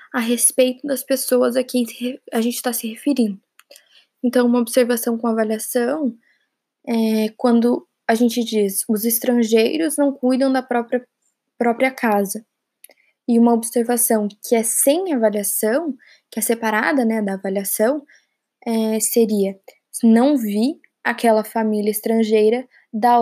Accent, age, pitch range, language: Brazilian, 10-29, 225-255 Hz, Portuguese